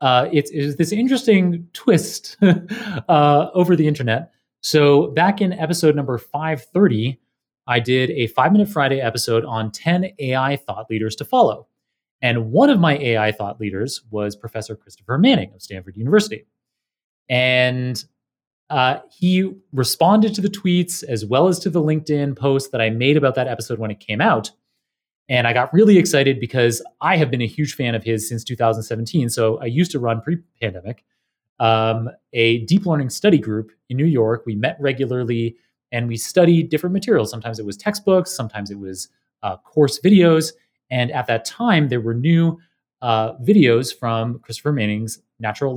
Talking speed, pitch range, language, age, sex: 170 wpm, 115-160 Hz, English, 30-49, male